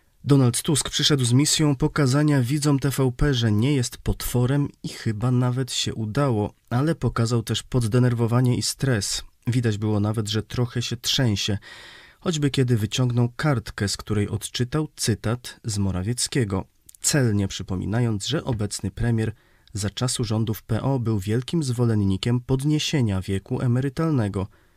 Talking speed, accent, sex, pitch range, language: 135 wpm, native, male, 105-135 Hz, Polish